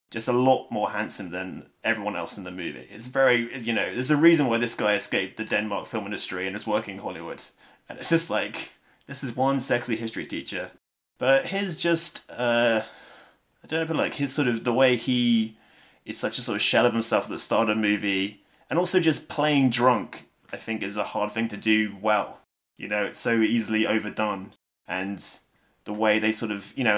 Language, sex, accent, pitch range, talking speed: English, male, British, 105-130 Hz, 215 wpm